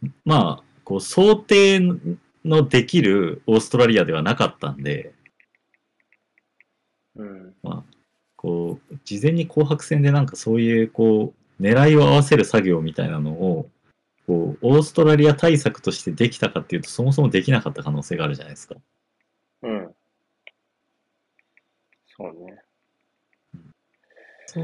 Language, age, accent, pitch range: Japanese, 40-59, native, 95-150 Hz